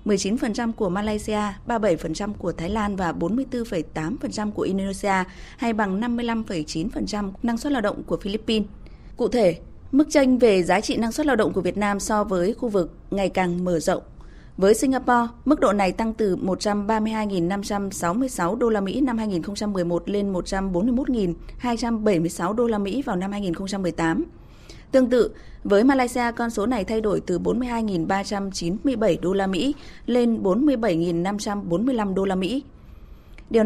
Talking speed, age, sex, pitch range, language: 150 wpm, 20-39, female, 185-240 Hz, Vietnamese